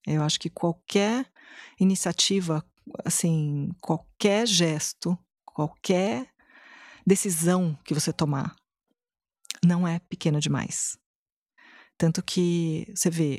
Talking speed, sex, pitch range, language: 95 wpm, female, 160-195 Hz, Portuguese